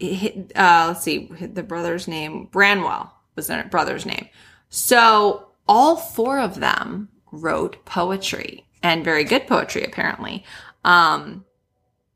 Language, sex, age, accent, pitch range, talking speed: English, female, 20-39, American, 165-200 Hz, 120 wpm